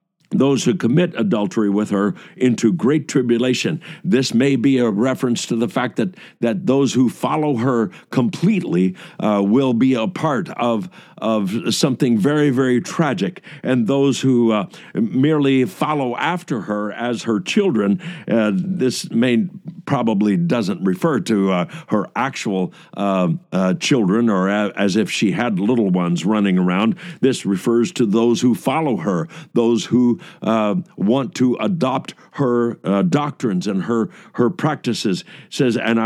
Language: English